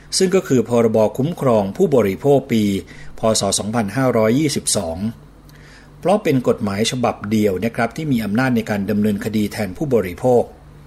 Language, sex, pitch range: Thai, male, 105-135 Hz